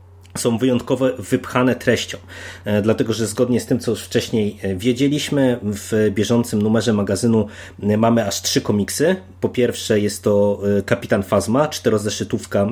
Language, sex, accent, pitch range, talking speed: Polish, male, native, 100-120 Hz, 125 wpm